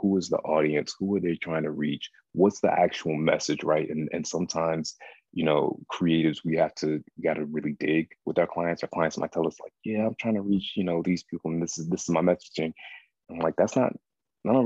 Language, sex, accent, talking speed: English, male, American, 240 wpm